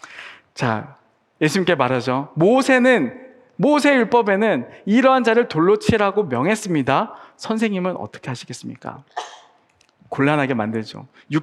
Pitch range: 155-250 Hz